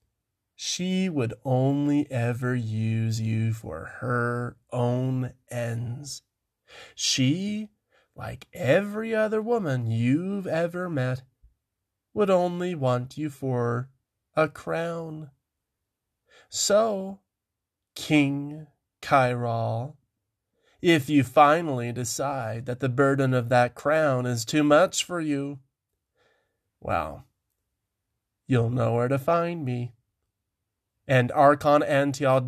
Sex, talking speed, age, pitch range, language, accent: male, 100 wpm, 30-49, 115-145 Hz, English, American